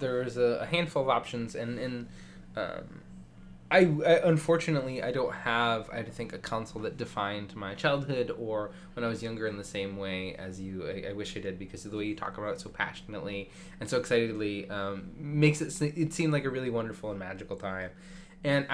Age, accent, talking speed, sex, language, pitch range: 20-39, American, 210 wpm, male, English, 105-160 Hz